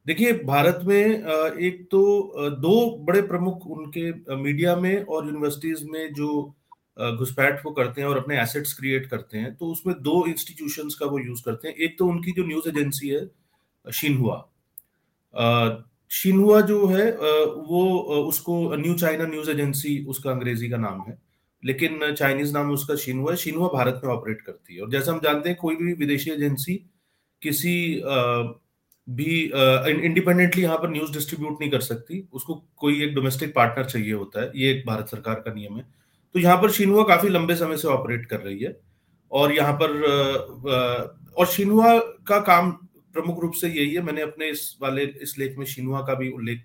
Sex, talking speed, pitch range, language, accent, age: male, 135 wpm, 130-170 Hz, Hindi, native, 40-59